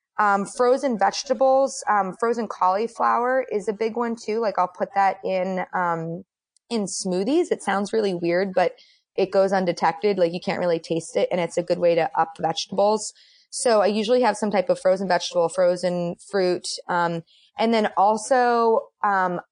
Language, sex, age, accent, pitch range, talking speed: English, female, 20-39, American, 175-215 Hz, 175 wpm